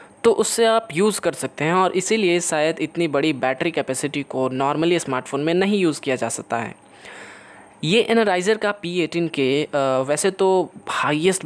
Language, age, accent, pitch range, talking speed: Hindi, 20-39, native, 140-175 Hz, 170 wpm